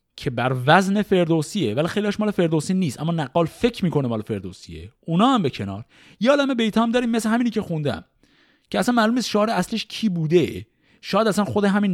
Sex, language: male, Persian